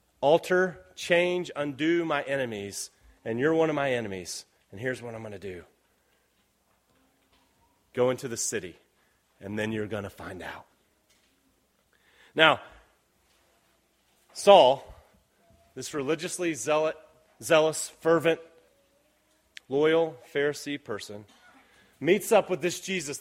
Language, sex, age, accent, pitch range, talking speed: English, male, 30-49, American, 150-190 Hz, 115 wpm